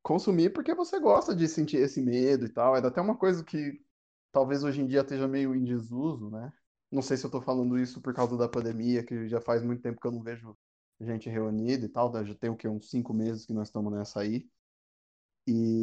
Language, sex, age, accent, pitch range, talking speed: Portuguese, male, 20-39, Brazilian, 115-160 Hz, 235 wpm